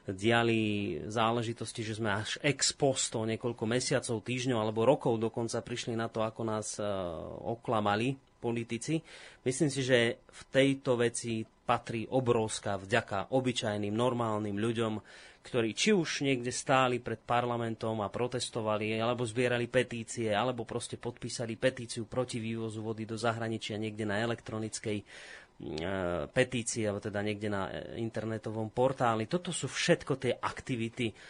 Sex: male